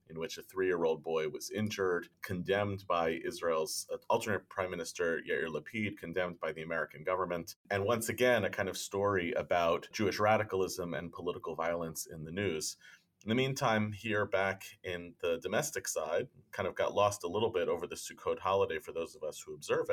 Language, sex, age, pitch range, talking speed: English, male, 30-49, 90-150 Hz, 185 wpm